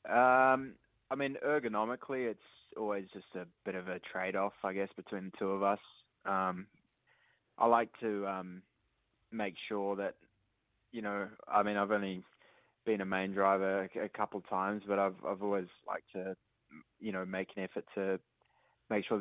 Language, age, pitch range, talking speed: English, 20-39, 95-105 Hz, 170 wpm